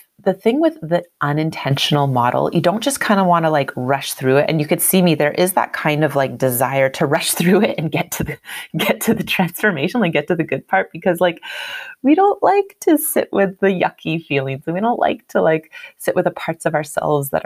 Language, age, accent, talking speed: English, 30-49, American, 245 wpm